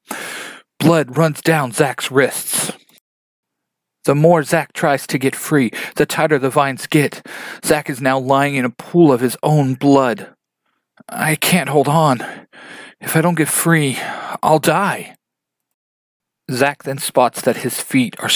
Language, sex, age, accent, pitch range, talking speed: English, male, 40-59, American, 125-155 Hz, 150 wpm